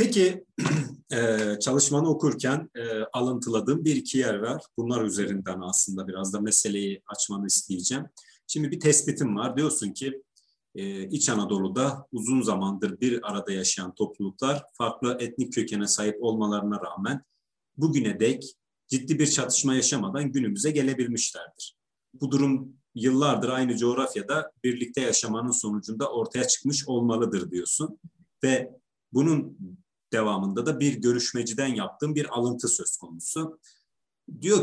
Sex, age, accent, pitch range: male, 40-59, native, 105-140 Hz